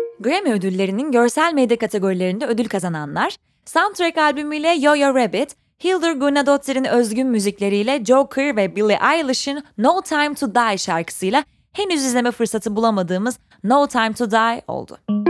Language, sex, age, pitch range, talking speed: Turkish, female, 20-39, 200-285 Hz, 130 wpm